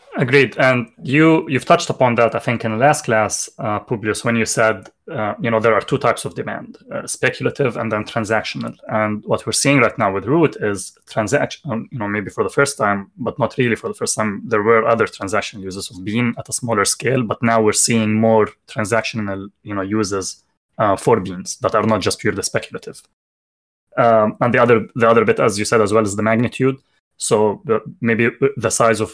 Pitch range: 105-125 Hz